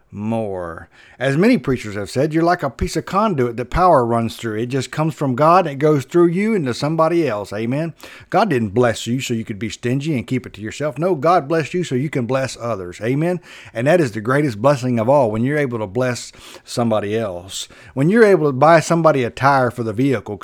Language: English